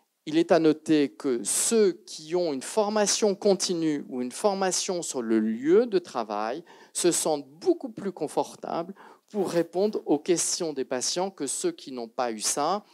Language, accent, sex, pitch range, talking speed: French, French, male, 135-195 Hz, 170 wpm